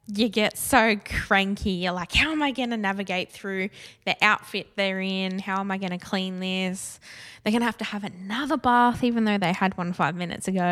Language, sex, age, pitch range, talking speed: English, female, 10-29, 165-195 Hz, 225 wpm